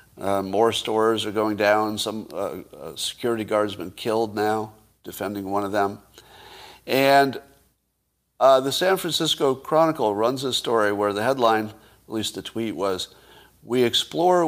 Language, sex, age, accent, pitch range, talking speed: English, male, 50-69, American, 110-145 Hz, 155 wpm